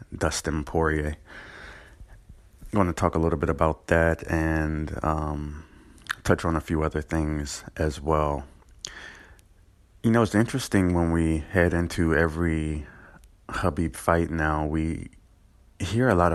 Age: 30-49